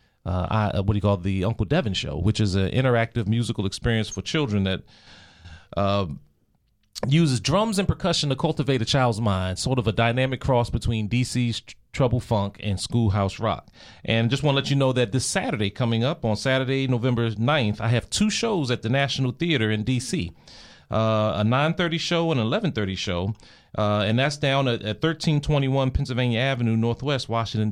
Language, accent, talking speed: English, American, 190 wpm